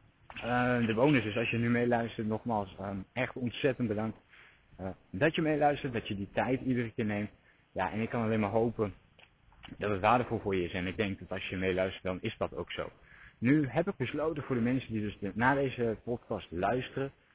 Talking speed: 220 wpm